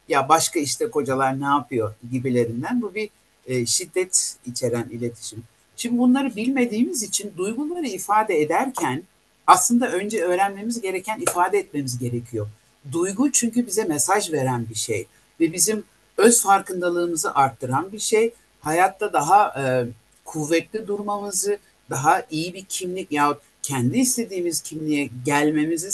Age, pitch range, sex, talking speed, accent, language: 60-79, 140-220 Hz, male, 125 wpm, native, Turkish